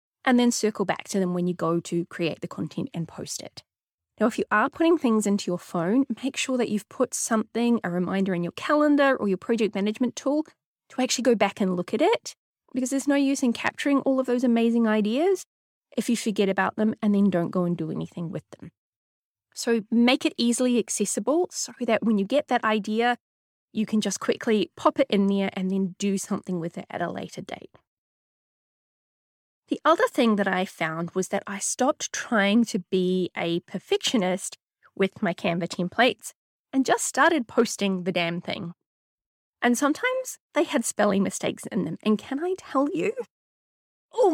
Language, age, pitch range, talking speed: English, 20-39, 190-245 Hz, 195 wpm